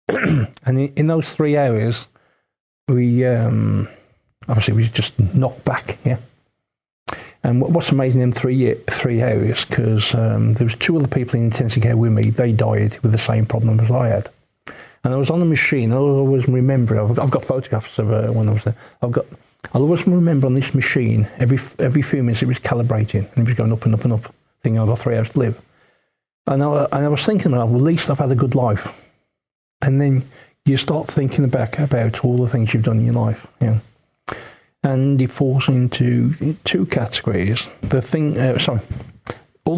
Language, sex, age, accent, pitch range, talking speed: English, male, 40-59, British, 115-140 Hz, 205 wpm